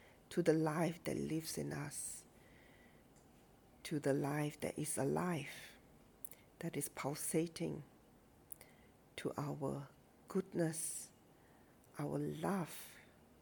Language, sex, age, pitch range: English, female, 50-69, 150-175 Hz